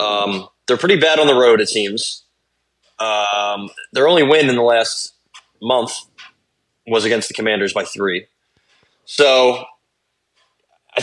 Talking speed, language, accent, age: 135 wpm, English, American, 20-39